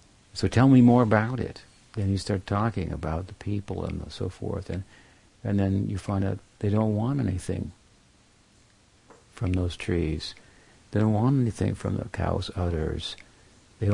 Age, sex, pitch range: 60-79, male, 95-115 Hz